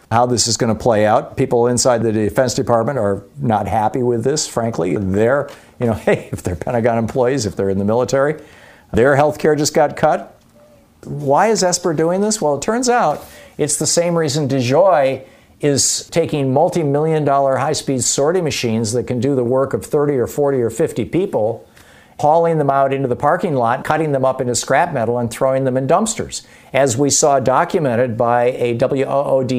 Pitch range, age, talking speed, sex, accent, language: 120-155 Hz, 50-69, 190 wpm, male, American, English